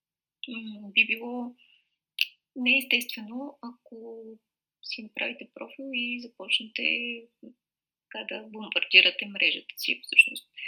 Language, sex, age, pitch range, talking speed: Bulgarian, female, 20-39, 215-265 Hz, 80 wpm